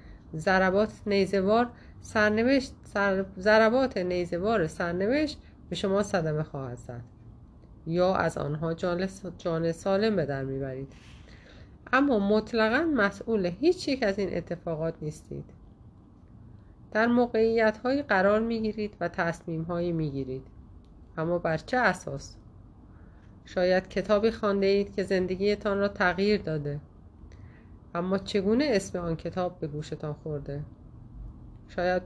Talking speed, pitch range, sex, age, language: 105 wpm, 140-210 Hz, female, 30-49, Persian